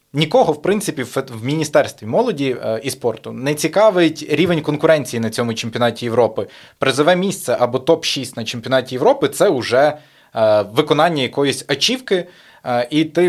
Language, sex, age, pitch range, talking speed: Ukrainian, male, 20-39, 125-155 Hz, 155 wpm